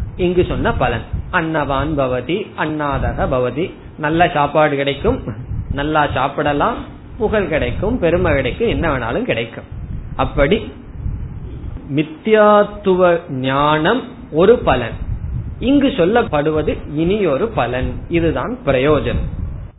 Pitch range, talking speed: 135-185 Hz, 80 wpm